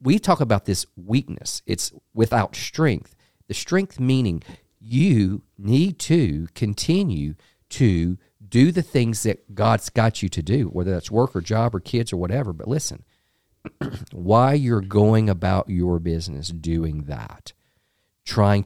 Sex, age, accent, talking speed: male, 50-69, American, 145 wpm